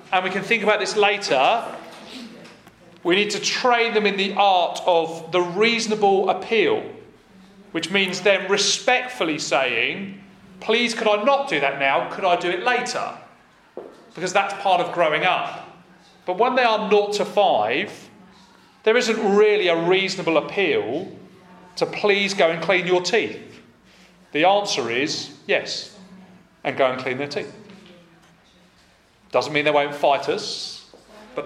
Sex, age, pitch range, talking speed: male, 30-49, 180-220 Hz, 150 wpm